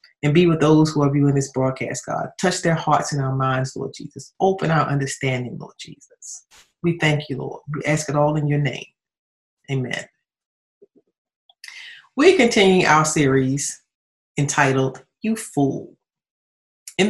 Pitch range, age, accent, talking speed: 135-185 Hz, 40-59, American, 150 wpm